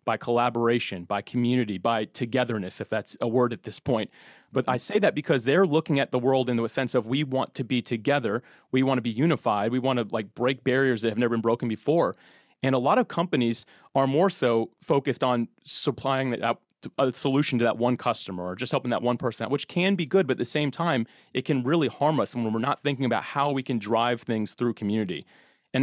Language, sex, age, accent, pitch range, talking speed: English, male, 30-49, American, 115-140 Hz, 230 wpm